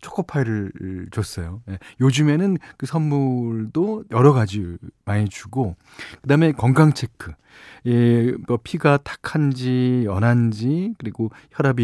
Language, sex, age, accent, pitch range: Korean, male, 40-59, native, 105-140 Hz